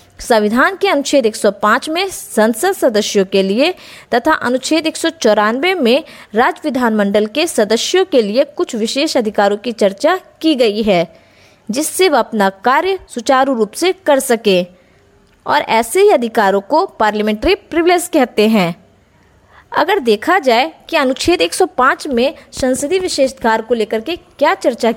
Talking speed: 150 wpm